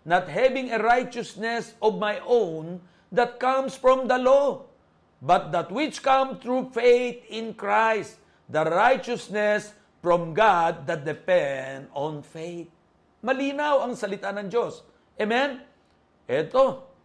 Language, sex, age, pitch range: Filipino, male, 50-69, 165-230 Hz